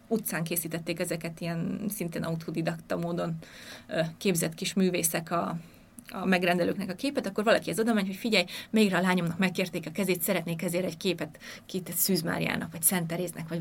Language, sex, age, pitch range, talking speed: Hungarian, female, 20-39, 175-205 Hz, 165 wpm